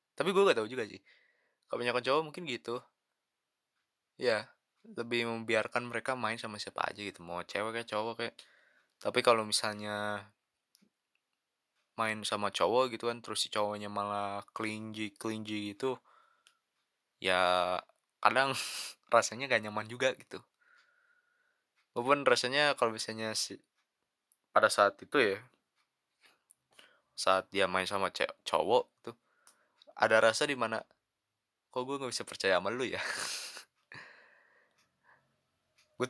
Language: Indonesian